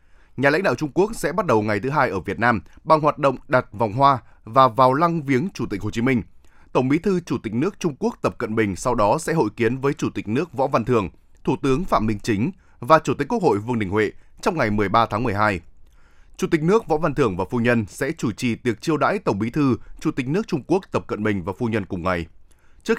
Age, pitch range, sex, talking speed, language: 20-39, 105-150 Hz, male, 265 wpm, Vietnamese